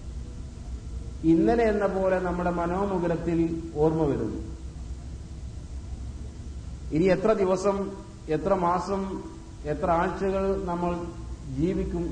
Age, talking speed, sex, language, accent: 50-69, 80 wpm, male, Malayalam, native